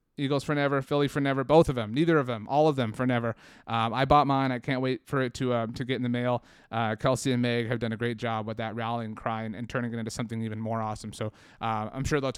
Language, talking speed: English, 290 wpm